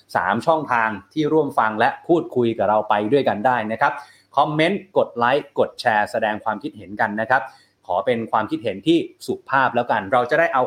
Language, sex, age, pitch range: Thai, male, 30-49, 120-155 Hz